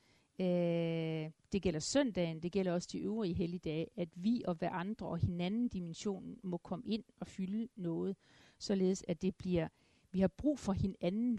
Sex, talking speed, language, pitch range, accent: female, 175 wpm, Danish, 170-210 Hz, native